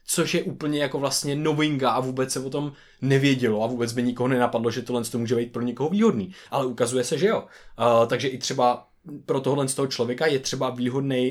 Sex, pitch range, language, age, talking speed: male, 115-140 Hz, Czech, 20-39, 220 wpm